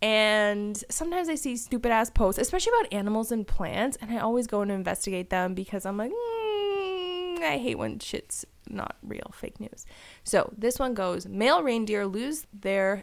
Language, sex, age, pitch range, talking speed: English, female, 20-39, 175-245 Hz, 175 wpm